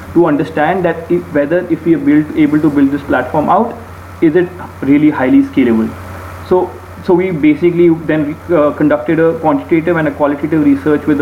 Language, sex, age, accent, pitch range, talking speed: English, male, 30-49, Indian, 140-175 Hz, 170 wpm